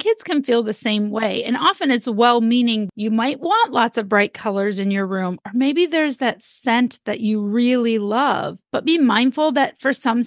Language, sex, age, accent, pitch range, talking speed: English, female, 30-49, American, 210-255 Hz, 205 wpm